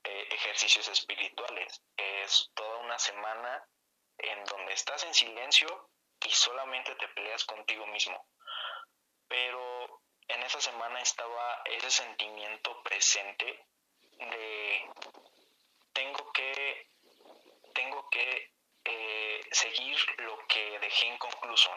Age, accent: 20-39, Mexican